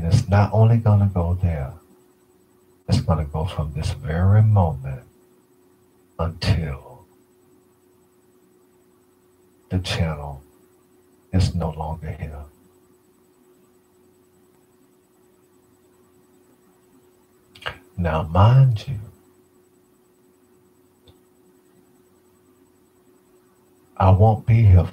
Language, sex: English, male